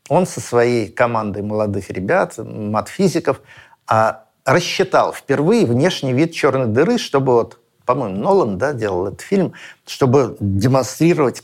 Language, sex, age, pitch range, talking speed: Russian, male, 50-69, 115-165 Hz, 110 wpm